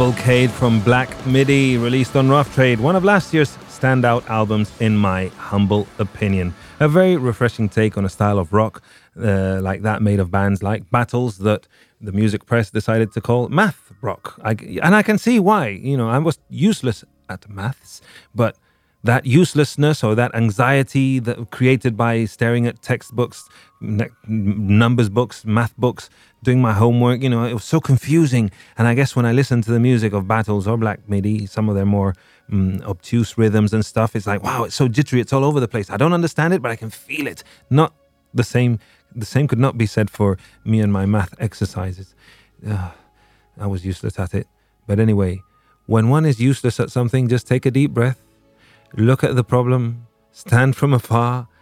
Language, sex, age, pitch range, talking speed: English, male, 30-49, 105-125 Hz, 195 wpm